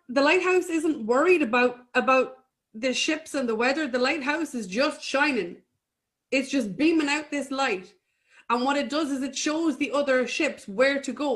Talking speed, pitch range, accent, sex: 185 wpm, 230-280 Hz, Irish, female